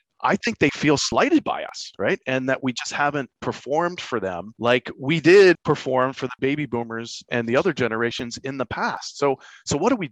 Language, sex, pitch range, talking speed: English, male, 110-130 Hz, 215 wpm